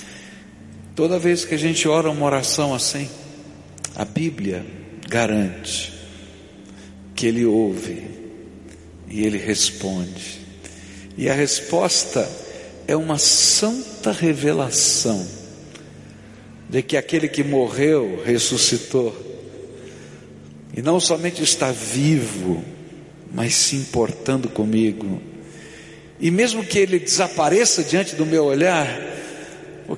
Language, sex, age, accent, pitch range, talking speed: Portuguese, male, 60-79, Brazilian, 110-165 Hz, 100 wpm